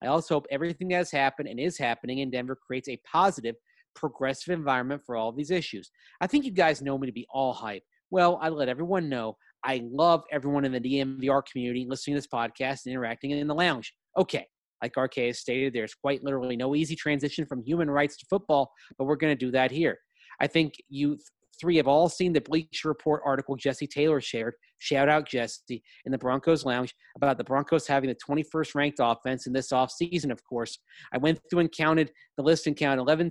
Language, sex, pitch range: English, male, 130-160 Hz